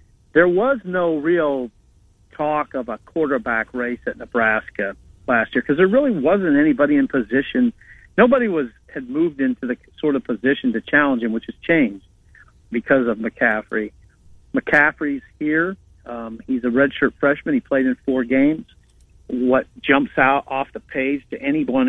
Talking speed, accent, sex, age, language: 160 wpm, American, male, 50-69, English